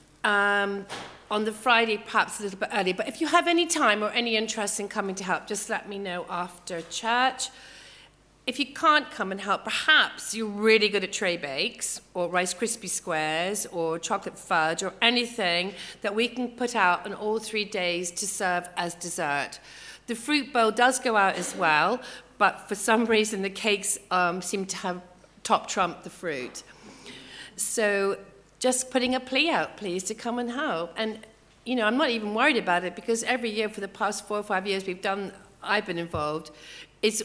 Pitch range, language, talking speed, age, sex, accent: 180-230 Hz, English, 195 wpm, 40-59, female, British